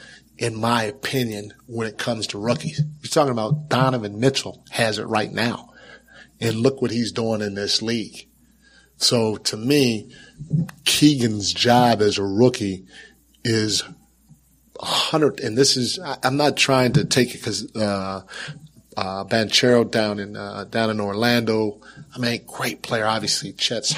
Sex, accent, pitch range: male, American, 105-130 Hz